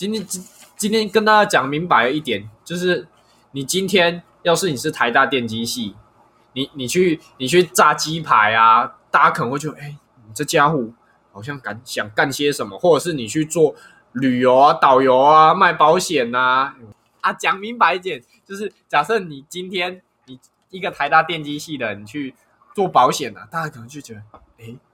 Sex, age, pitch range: male, 20-39, 125-180 Hz